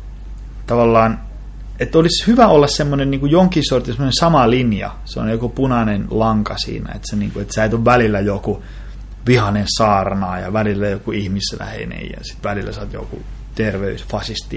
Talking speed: 150 wpm